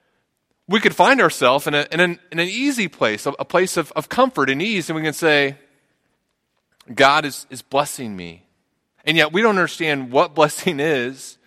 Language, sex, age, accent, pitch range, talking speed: English, male, 30-49, American, 120-165 Hz, 175 wpm